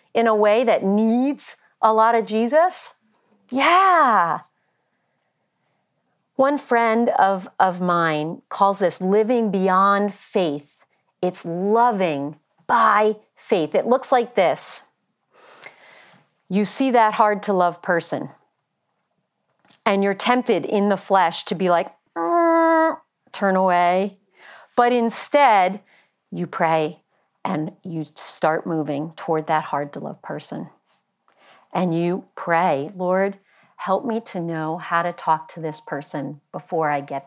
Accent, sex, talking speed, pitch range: American, female, 125 wpm, 175-245 Hz